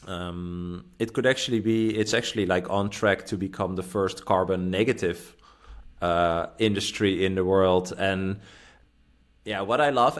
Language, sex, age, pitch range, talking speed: English, male, 20-39, 95-115 Hz, 155 wpm